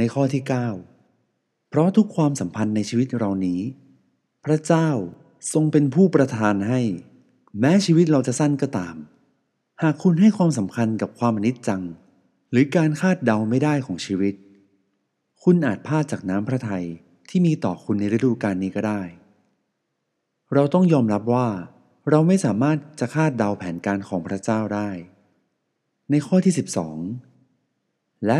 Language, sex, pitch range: Thai, male, 95-145 Hz